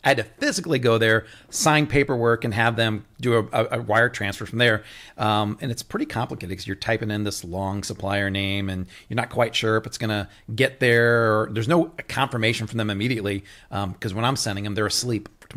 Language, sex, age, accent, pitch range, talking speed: English, male, 40-59, American, 105-130 Hz, 225 wpm